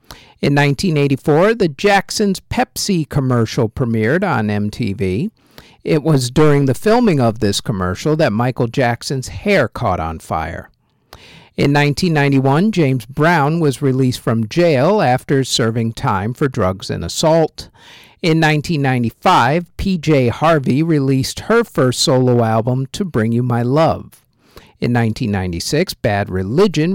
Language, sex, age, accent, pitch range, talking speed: English, male, 50-69, American, 115-165 Hz, 125 wpm